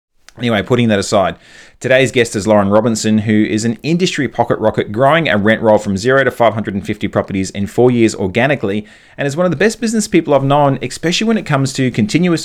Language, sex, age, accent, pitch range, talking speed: English, male, 30-49, Australian, 105-130 Hz, 210 wpm